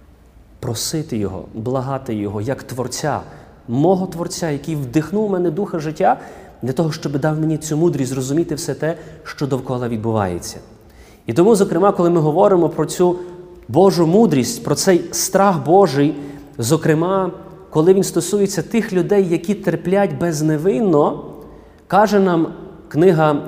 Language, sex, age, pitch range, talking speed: Ukrainian, male, 30-49, 135-185 Hz, 135 wpm